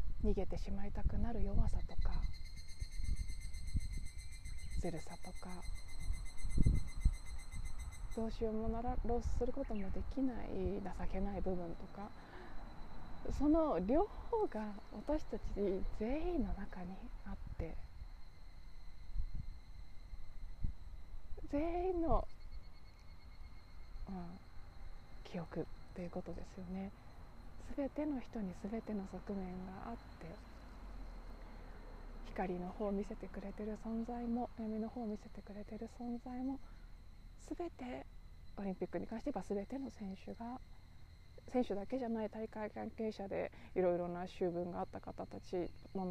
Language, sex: Japanese, female